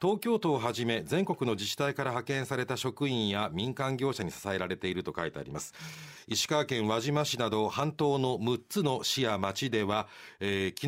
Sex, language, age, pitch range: male, Japanese, 40-59, 105-145 Hz